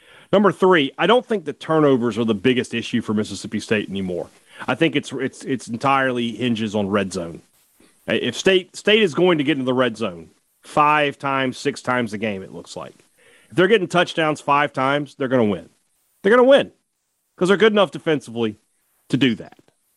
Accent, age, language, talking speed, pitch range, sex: American, 40-59, English, 200 wpm, 125-165 Hz, male